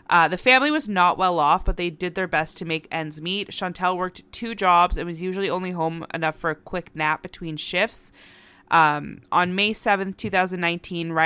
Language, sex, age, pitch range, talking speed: English, female, 20-39, 160-190 Hz, 195 wpm